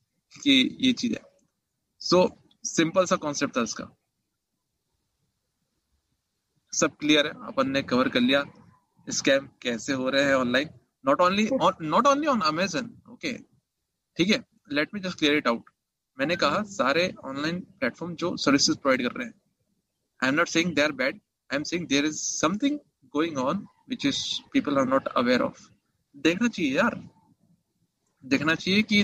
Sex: male